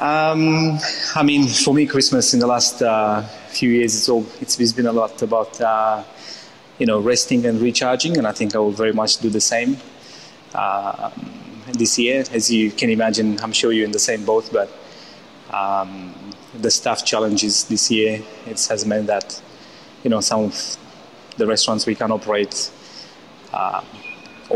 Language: English